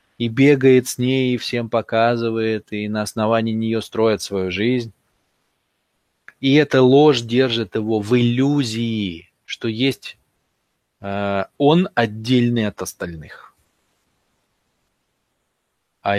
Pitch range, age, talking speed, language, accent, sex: 105-135 Hz, 20-39, 110 wpm, Russian, native, male